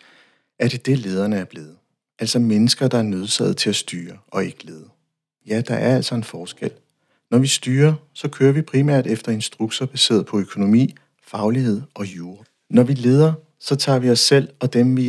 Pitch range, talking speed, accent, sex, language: 110-135 Hz, 195 wpm, native, male, Danish